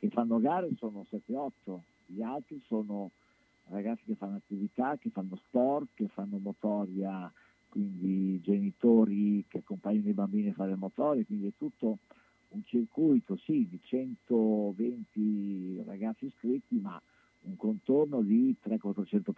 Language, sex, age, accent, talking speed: Italian, male, 50-69, native, 130 wpm